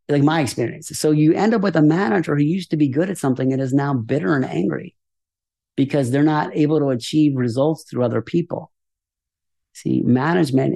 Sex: male